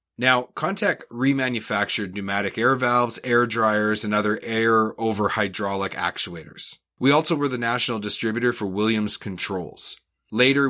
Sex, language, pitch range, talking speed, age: male, English, 100-125 Hz, 135 wpm, 30-49